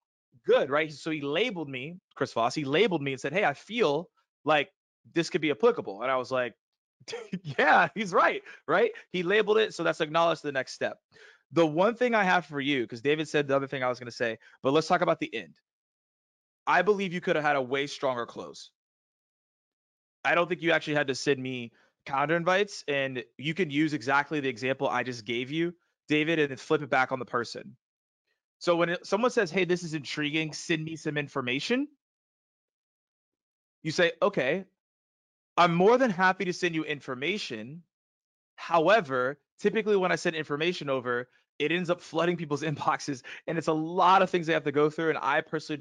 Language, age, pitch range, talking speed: English, 20-39, 140-180 Hz, 200 wpm